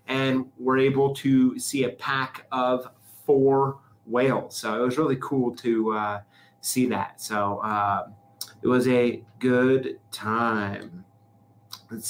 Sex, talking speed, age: male, 135 wpm, 30-49